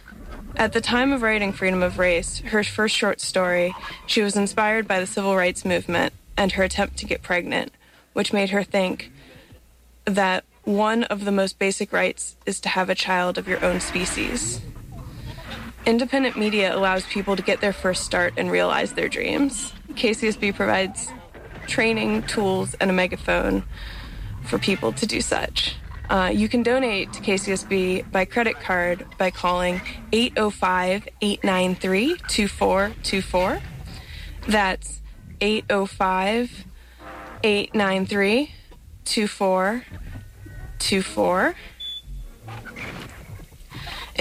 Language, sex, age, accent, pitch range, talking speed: English, female, 20-39, American, 185-215 Hz, 115 wpm